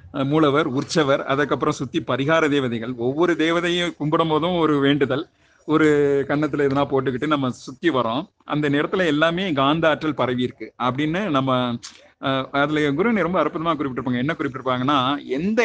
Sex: male